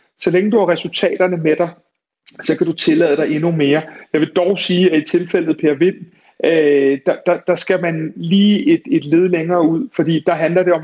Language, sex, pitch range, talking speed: Danish, male, 155-180 Hz, 210 wpm